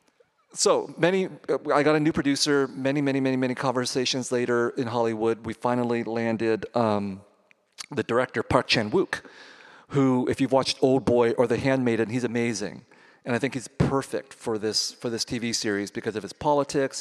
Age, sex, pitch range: 40-59, male, 115-140 Hz